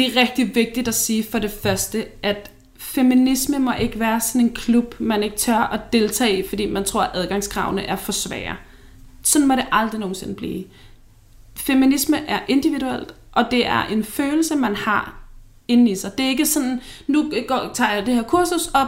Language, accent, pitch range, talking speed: Danish, native, 210-275 Hz, 195 wpm